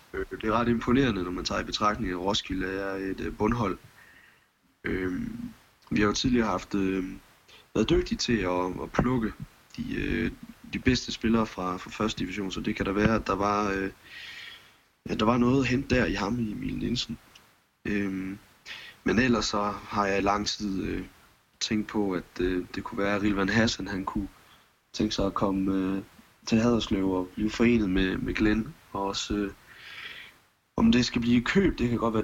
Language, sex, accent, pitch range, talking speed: Danish, male, native, 95-110 Hz, 190 wpm